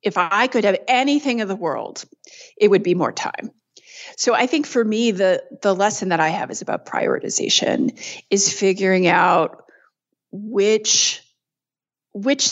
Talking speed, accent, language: 155 wpm, American, English